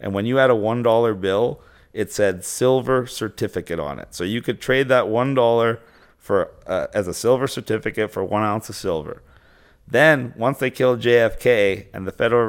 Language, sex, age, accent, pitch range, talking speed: English, male, 40-59, American, 100-125 Hz, 185 wpm